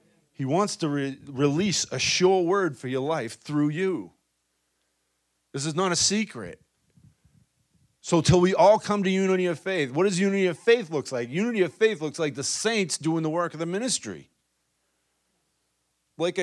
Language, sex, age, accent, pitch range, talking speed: English, male, 40-59, American, 135-190 Hz, 170 wpm